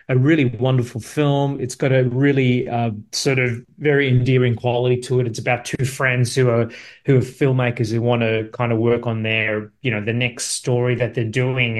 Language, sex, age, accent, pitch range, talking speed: Greek, male, 30-49, Australian, 115-130 Hz, 210 wpm